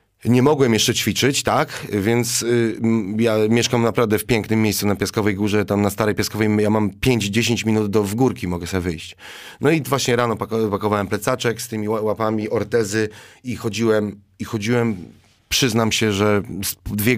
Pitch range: 105-125 Hz